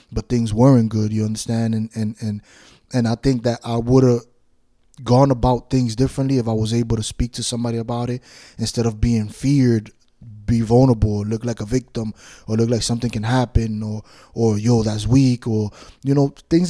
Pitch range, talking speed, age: 115-130 Hz, 200 wpm, 20-39